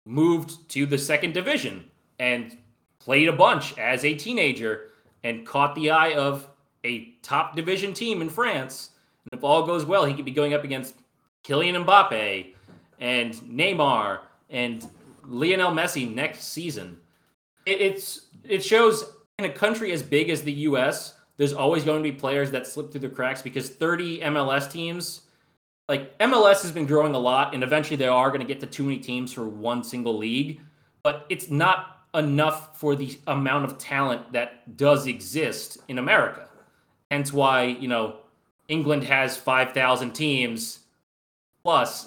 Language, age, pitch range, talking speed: English, 30-49, 125-160 Hz, 160 wpm